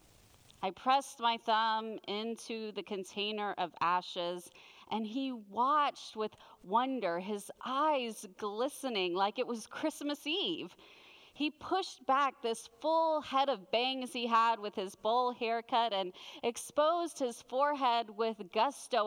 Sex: female